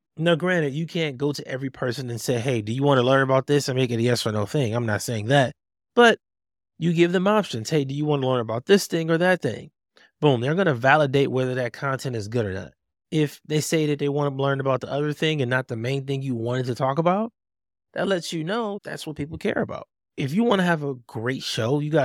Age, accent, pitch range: 20-39, American, 125-165 Hz